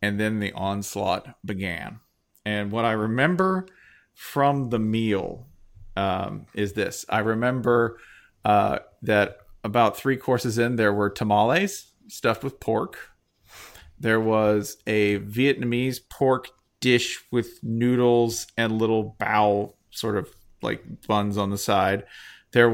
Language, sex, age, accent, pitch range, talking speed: English, male, 40-59, American, 105-130 Hz, 125 wpm